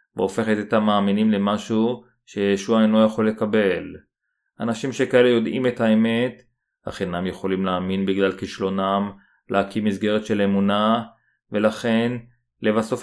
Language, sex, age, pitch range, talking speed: Hebrew, male, 30-49, 105-115 Hz, 120 wpm